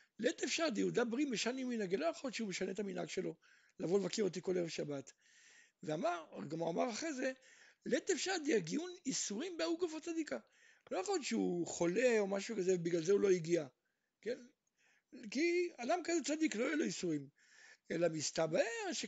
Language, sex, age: Hebrew, male, 60-79